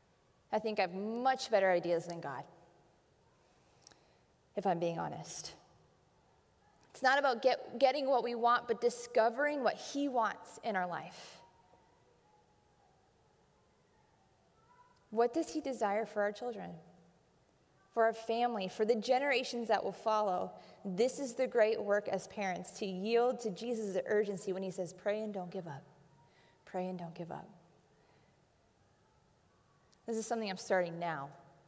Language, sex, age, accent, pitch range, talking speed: English, female, 20-39, American, 185-230 Hz, 145 wpm